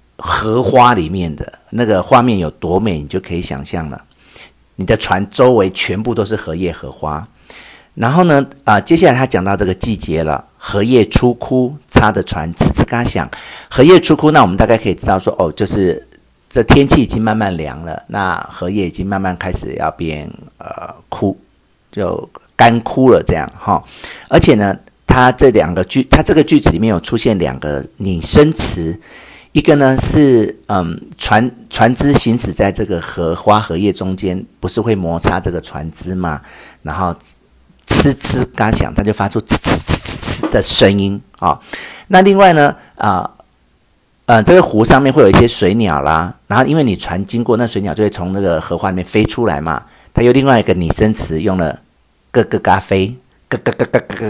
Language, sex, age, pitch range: Chinese, male, 50-69, 85-120 Hz